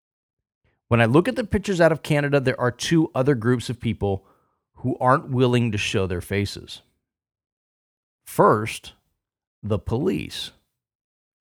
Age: 40-59